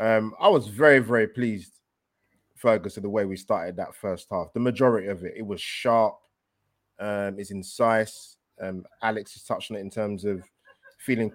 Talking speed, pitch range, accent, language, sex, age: 180 wpm, 100-125 Hz, British, English, male, 20-39